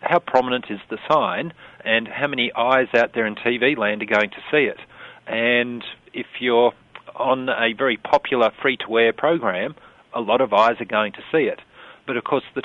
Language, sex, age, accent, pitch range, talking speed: English, male, 40-59, Australian, 105-125 Hz, 195 wpm